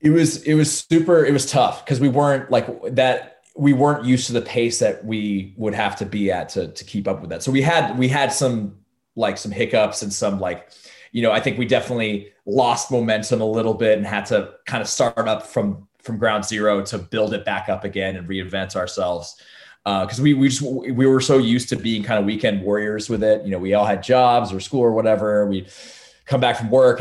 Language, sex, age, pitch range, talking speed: English, male, 20-39, 100-125 Hz, 240 wpm